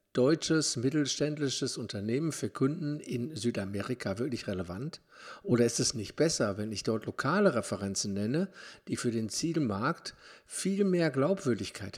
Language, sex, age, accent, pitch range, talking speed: German, male, 50-69, German, 100-145 Hz, 135 wpm